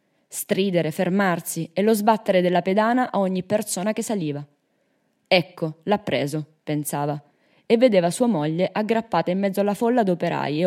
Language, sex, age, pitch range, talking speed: Italian, female, 20-39, 160-220 Hz, 150 wpm